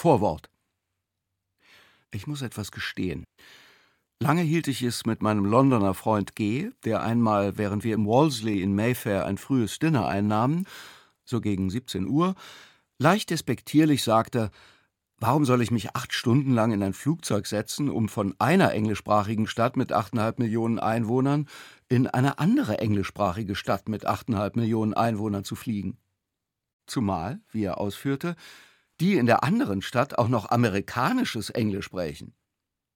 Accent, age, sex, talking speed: German, 50-69, male, 140 wpm